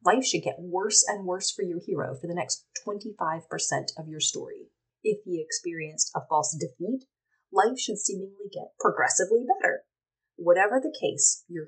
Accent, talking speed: American, 165 wpm